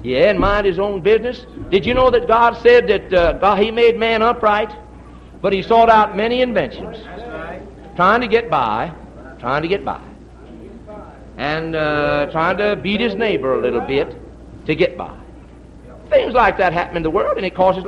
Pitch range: 150-235 Hz